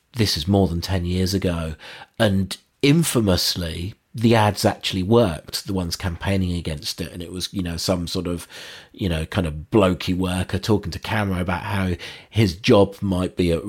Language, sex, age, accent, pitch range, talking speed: English, male, 40-59, British, 90-120 Hz, 185 wpm